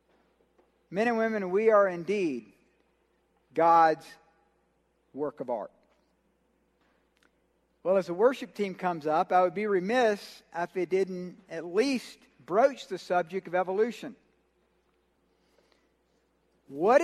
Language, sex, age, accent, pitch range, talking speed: English, male, 50-69, American, 185-245 Hz, 115 wpm